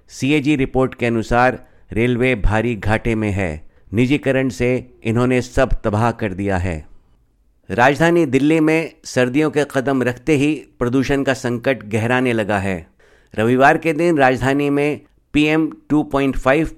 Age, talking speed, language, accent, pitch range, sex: 50-69, 135 wpm, Hindi, native, 115-140 Hz, male